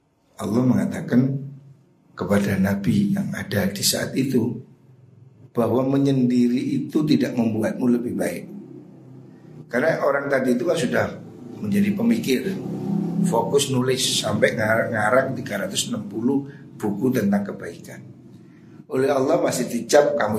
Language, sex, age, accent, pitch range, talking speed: Indonesian, male, 50-69, native, 115-150 Hz, 105 wpm